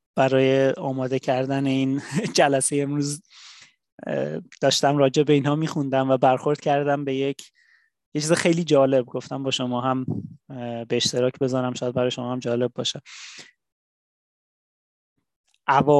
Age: 30-49